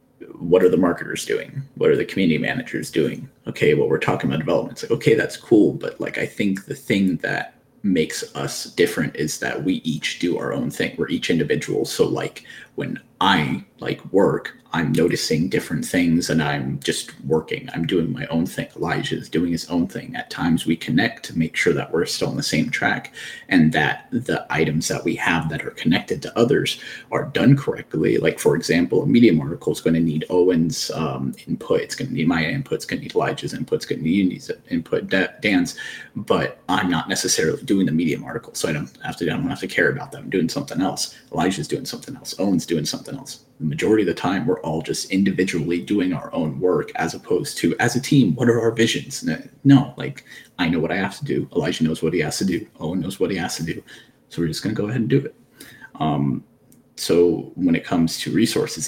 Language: English